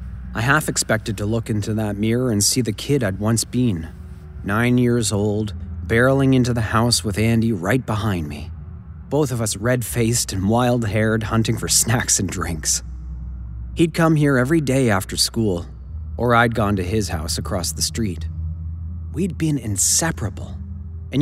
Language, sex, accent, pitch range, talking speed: English, male, American, 85-115 Hz, 165 wpm